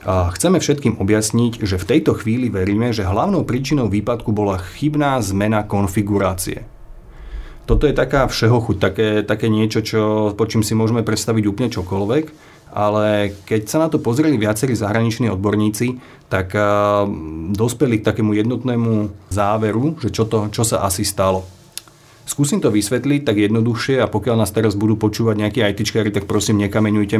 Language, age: Slovak, 30-49